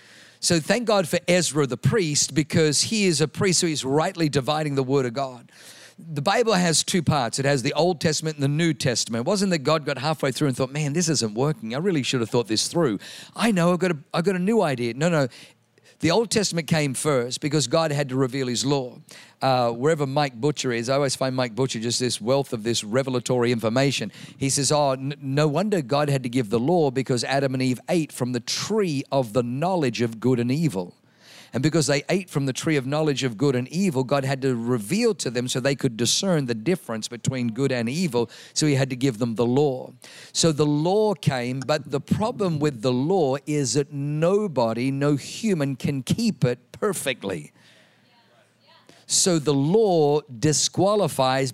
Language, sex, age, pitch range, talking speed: English, male, 50-69, 130-165 Hz, 210 wpm